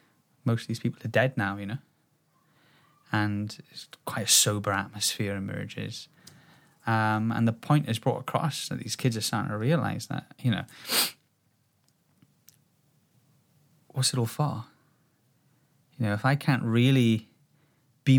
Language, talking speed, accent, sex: English, 140 wpm, British, male